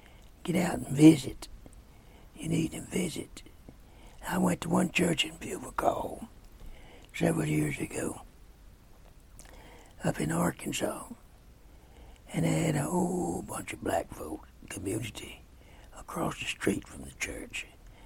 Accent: American